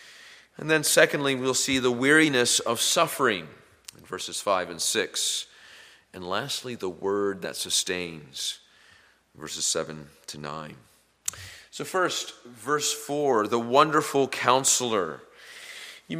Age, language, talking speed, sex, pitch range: 40-59, English, 120 wpm, male, 125-170 Hz